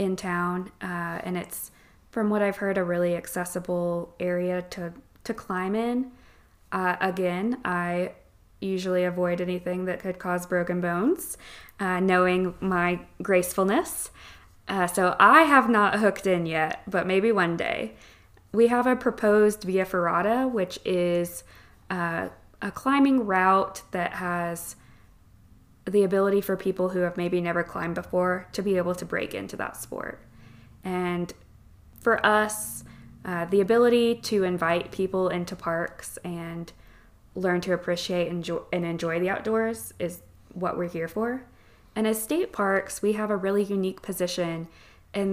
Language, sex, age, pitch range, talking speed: English, female, 20-39, 175-200 Hz, 145 wpm